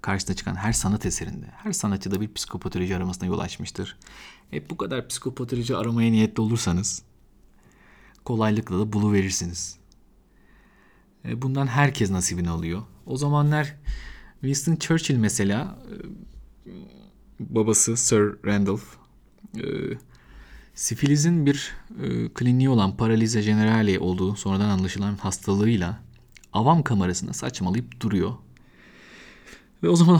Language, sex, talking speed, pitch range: Turkish, male, 105 wpm, 95-135 Hz